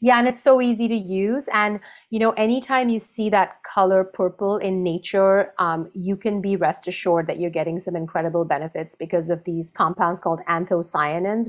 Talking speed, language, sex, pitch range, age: 190 wpm, English, female, 170-215 Hz, 30-49